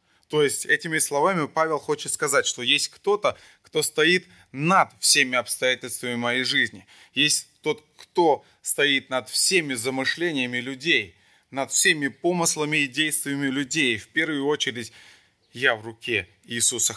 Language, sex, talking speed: Russian, male, 135 wpm